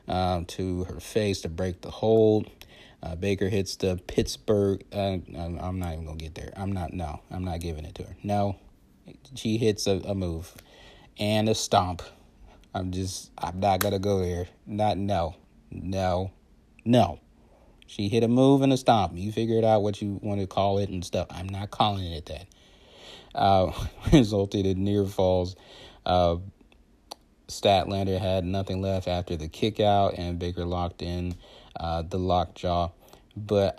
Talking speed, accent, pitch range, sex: 165 wpm, American, 90-105 Hz, male